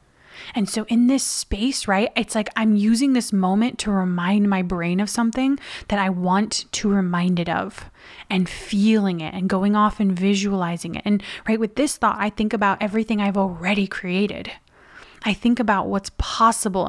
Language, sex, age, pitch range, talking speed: English, female, 20-39, 190-235 Hz, 180 wpm